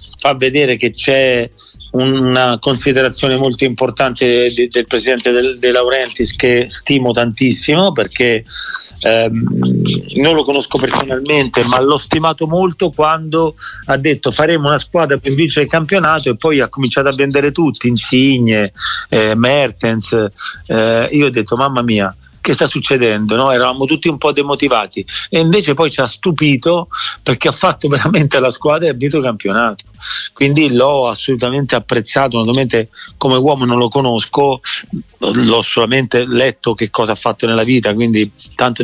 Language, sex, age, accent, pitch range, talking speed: Italian, male, 40-59, native, 120-145 Hz, 150 wpm